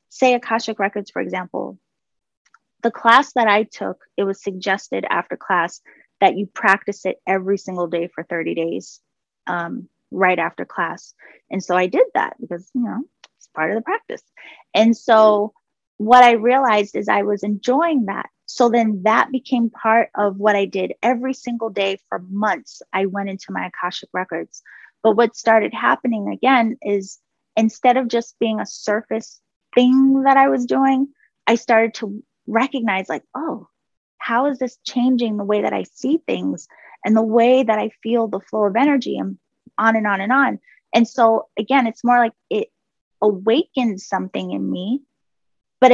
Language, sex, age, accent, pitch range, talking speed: English, female, 20-39, American, 200-250 Hz, 175 wpm